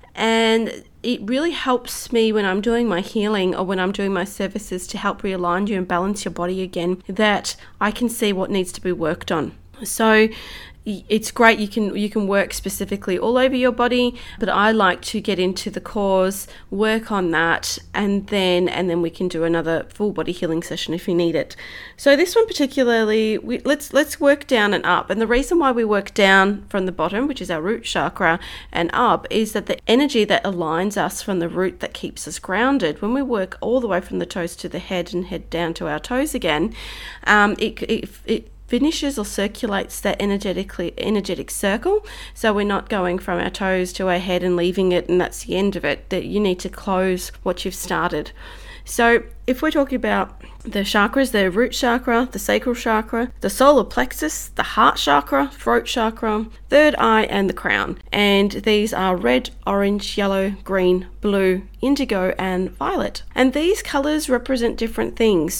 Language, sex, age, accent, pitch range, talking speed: English, female, 30-49, Australian, 185-235 Hz, 200 wpm